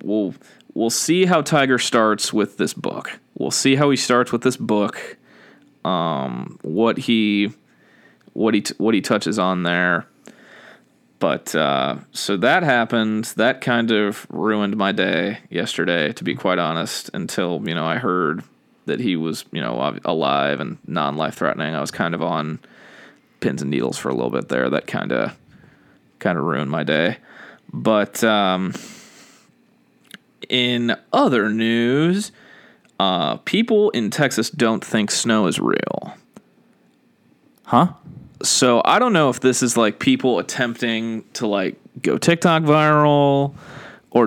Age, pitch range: 20-39, 110-150 Hz